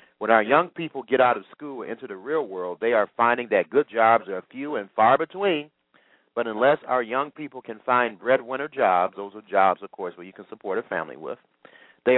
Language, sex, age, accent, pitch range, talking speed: English, male, 40-59, American, 105-140 Hz, 225 wpm